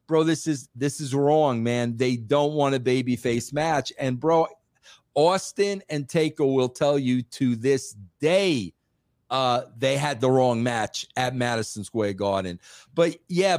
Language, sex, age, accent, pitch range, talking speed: English, male, 50-69, American, 135-195 Hz, 160 wpm